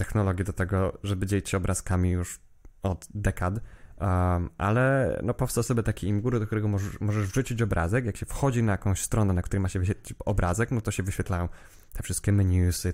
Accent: native